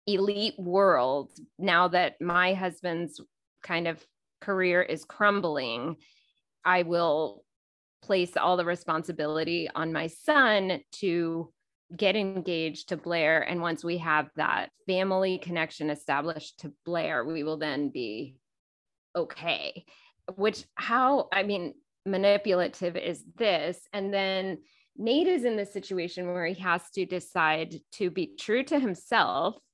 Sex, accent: female, American